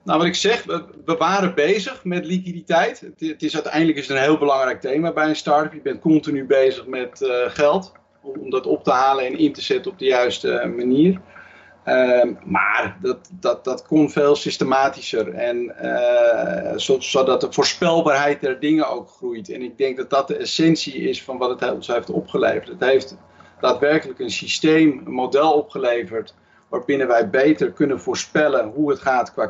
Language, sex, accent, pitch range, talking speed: Dutch, male, Dutch, 130-175 Hz, 175 wpm